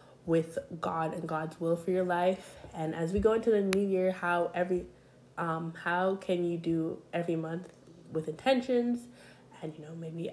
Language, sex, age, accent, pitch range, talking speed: English, female, 20-39, American, 160-185 Hz, 180 wpm